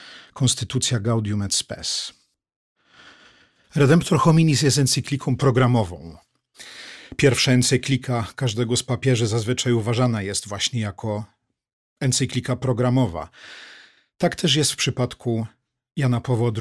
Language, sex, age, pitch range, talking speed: Polish, male, 40-59, 115-135 Hz, 100 wpm